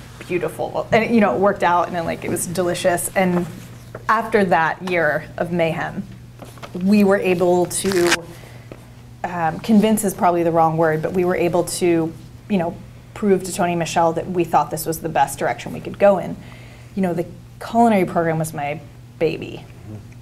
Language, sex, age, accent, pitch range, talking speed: English, female, 20-39, American, 150-185 Hz, 180 wpm